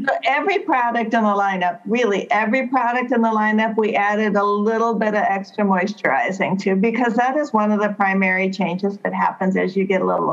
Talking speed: 210 wpm